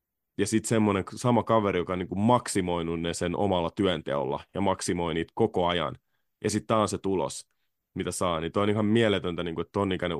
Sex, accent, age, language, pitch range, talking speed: male, native, 20-39, Finnish, 90-110 Hz, 195 wpm